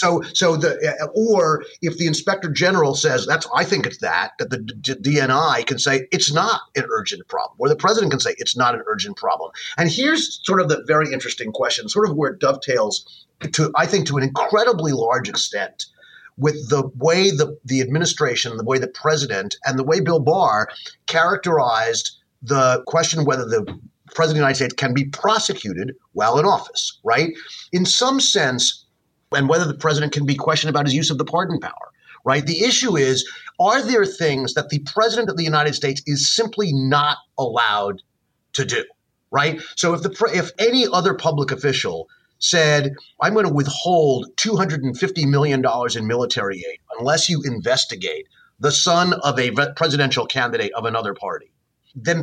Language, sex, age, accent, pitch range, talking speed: English, male, 30-49, American, 140-185 Hz, 180 wpm